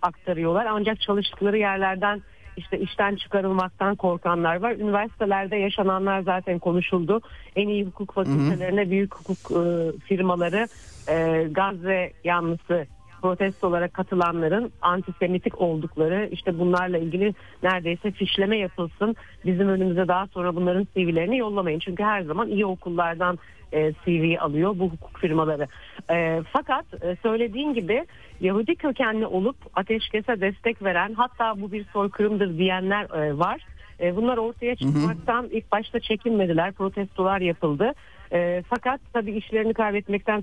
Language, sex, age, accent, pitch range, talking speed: Turkish, female, 40-59, native, 170-210 Hz, 115 wpm